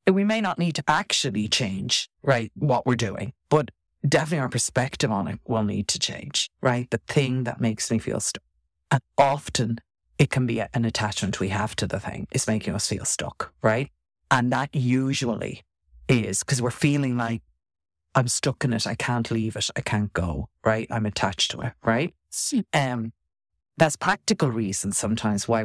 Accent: Irish